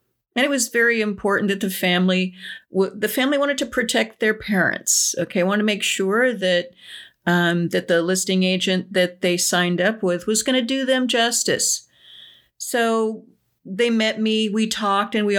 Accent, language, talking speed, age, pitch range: American, English, 185 wpm, 40-59, 185-215 Hz